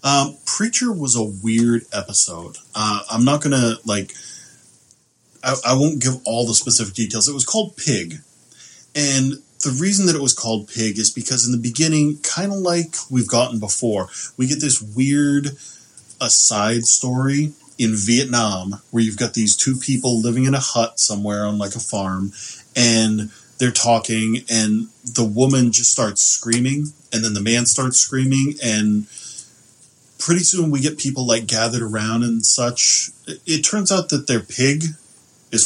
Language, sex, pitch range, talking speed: English, male, 110-135 Hz, 170 wpm